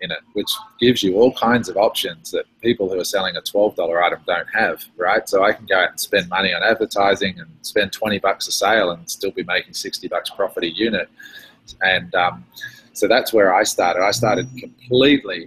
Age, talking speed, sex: 20-39, 215 wpm, male